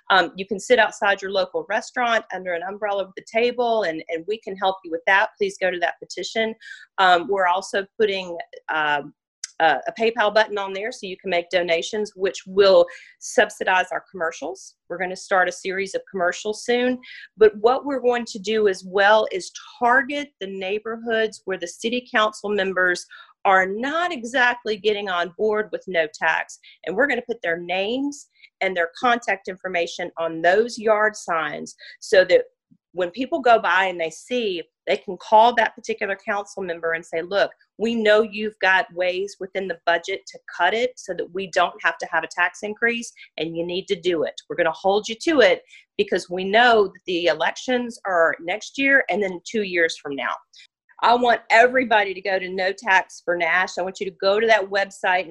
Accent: American